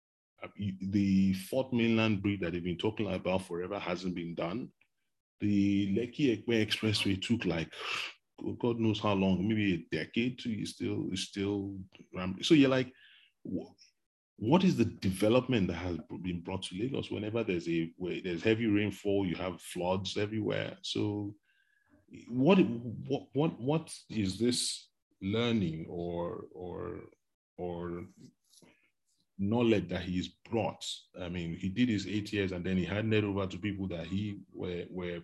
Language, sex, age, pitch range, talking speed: English, male, 30-49, 95-120 Hz, 150 wpm